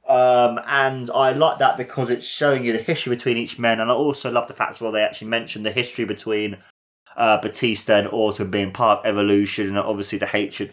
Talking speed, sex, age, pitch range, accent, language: 225 wpm, male, 20-39, 95-110 Hz, British, English